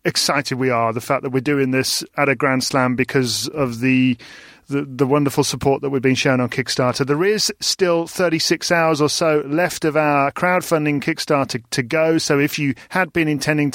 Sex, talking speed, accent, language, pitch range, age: male, 215 wpm, British, English, 130-160 Hz, 40-59